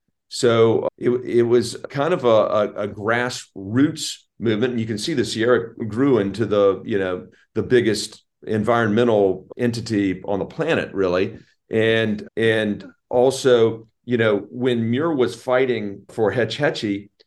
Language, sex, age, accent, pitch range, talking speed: English, male, 40-59, American, 105-130 Hz, 145 wpm